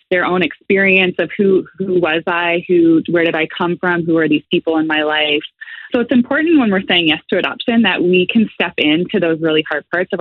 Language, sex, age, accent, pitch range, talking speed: English, female, 20-39, American, 155-195 Hz, 235 wpm